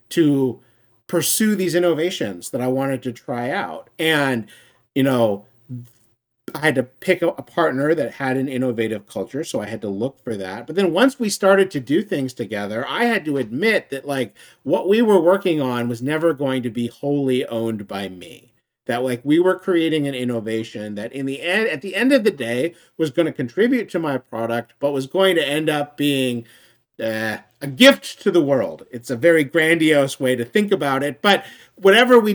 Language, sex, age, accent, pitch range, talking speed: English, male, 50-69, American, 125-170 Hz, 205 wpm